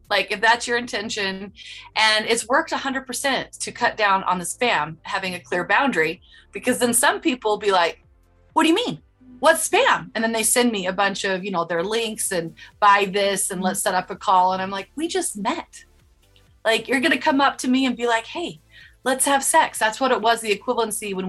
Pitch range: 195-250 Hz